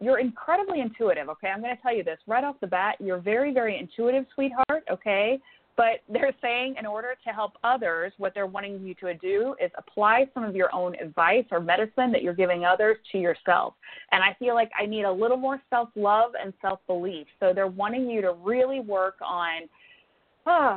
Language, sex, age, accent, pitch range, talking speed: English, female, 30-49, American, 190-255 Hz, 200 wpm